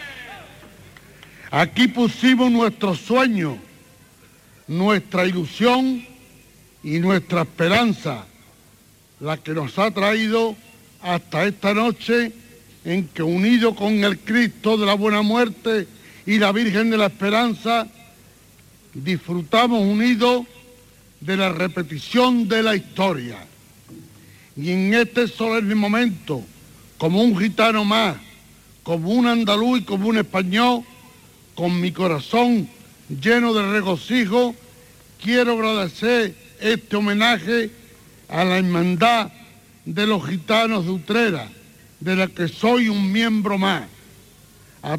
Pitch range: 180-225 Hz